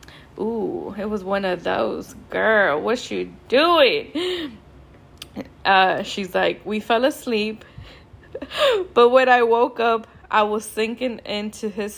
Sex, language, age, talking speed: female, English, 10-29, 130 wpm